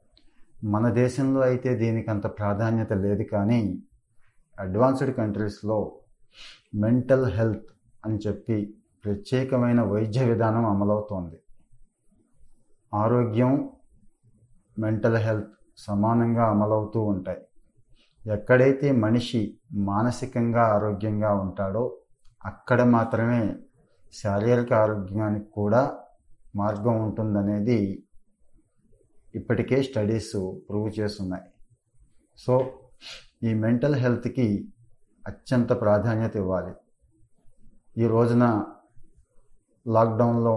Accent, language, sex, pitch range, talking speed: native, Telugu, male, 105-120 Hz, 75 wpm